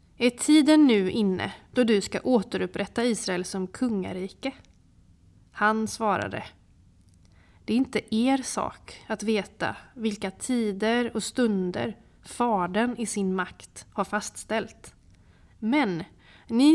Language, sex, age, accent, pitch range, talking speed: Swedish, female, 30-49, native, 180-235 Hz, 115 wpm